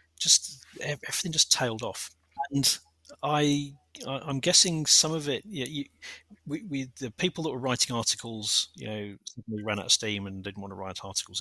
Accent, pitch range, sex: British, 95-120 Hz, male